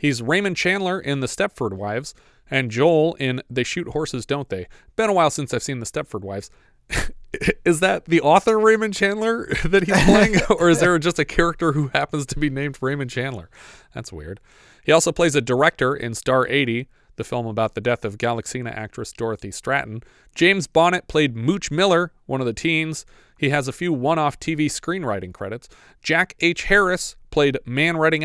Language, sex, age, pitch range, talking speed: English, male, 30-49, 125-165 Hz, 190 wpm